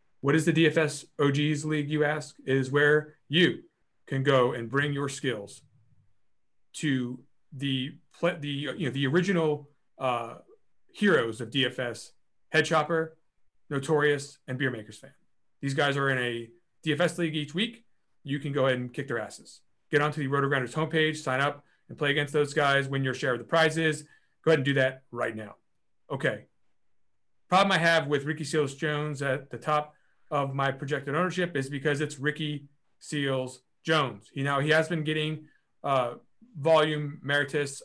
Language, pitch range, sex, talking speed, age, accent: English, 130-155 Hz, male, 170 wpm, 30-49, American